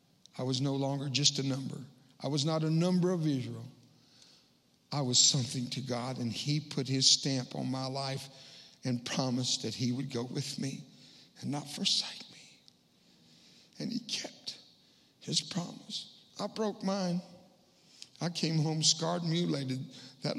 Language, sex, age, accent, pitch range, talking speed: English, male, 60-79, American, 125-150 Hz, 155 wpm